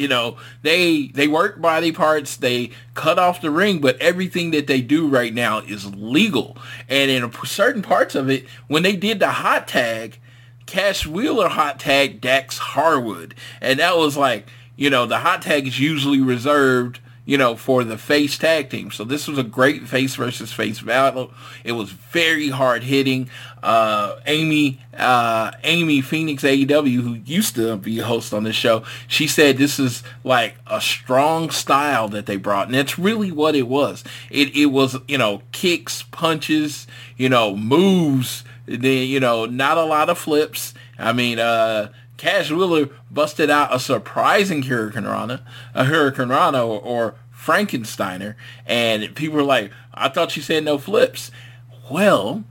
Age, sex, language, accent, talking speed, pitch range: 20-39, male, English, American, 170 wpm, 120-150 Hz